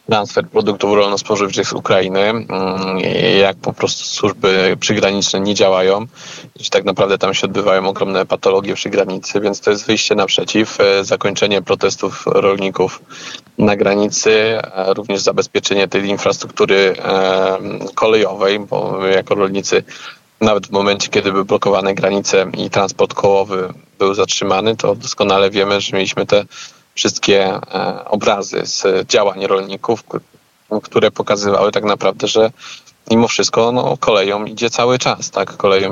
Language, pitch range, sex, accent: Polish, 95-110 Hz, male, native